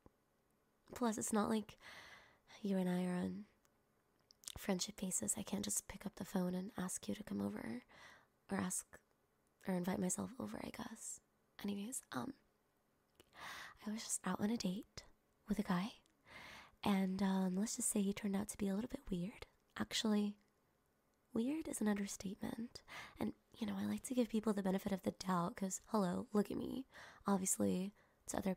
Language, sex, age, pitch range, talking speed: English, female, 20-39, 185-215 Hz, 175 wpm